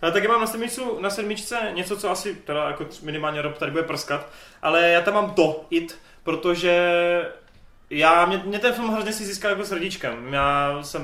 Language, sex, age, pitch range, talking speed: Czech, male, 20-39, 135-170 Hz, 190 wpm